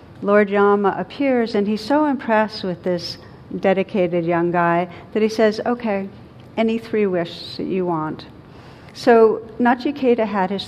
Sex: female